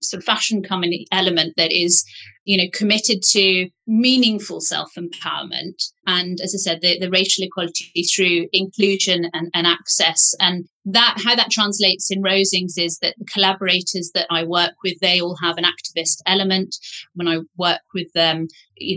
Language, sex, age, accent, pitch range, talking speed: English, female, 30-49, British, 170-195 Hz, 165 wpm